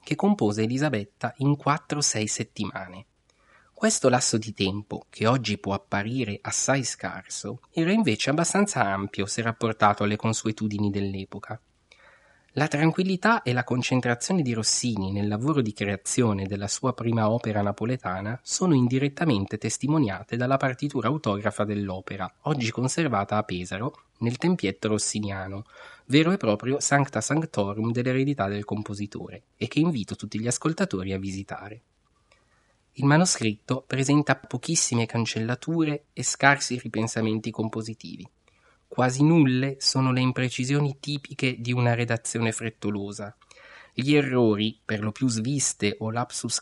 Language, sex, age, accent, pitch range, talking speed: Italian, male, 20-39, native, 105-135 Hz, 130 wpm